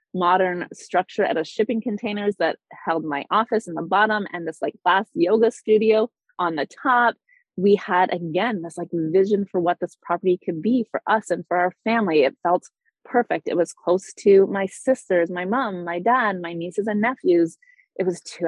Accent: American